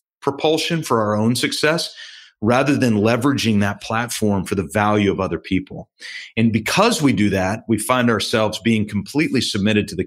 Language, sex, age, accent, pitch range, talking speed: English, male, 40-59, American, 100-130 Hz, 175 wpm